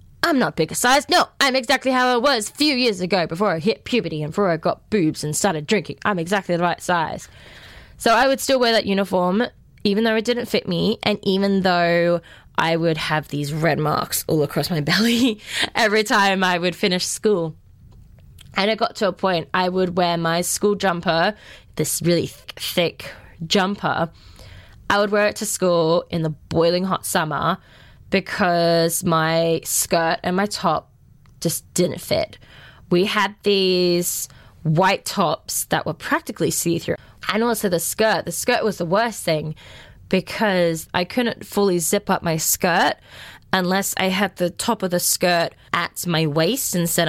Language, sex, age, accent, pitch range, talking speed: English, female, 10-29, Australian, 165-215 Hz, 175 wpm